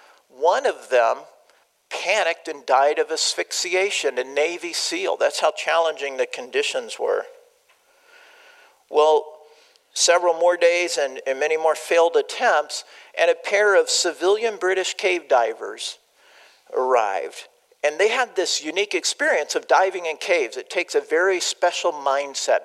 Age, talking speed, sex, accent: 50-69, 140 wpm, male, American